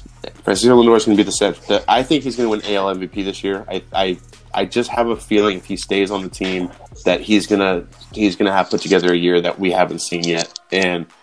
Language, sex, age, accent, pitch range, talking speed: English, male, 20-39, American, 95-110 Hz, 250 wpm